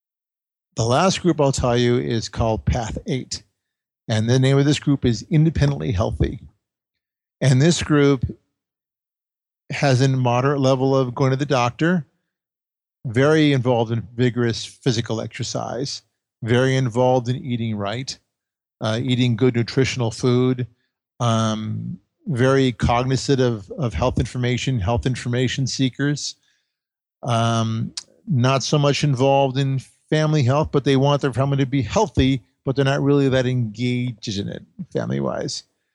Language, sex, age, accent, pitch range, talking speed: English, male, 50-69, American, 120-140 Hz, 135 wpm